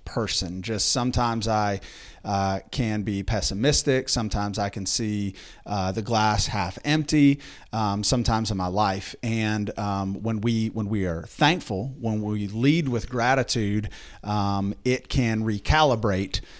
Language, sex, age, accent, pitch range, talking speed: English, male, 30-49, American, 100-125 Hz, 140 wpm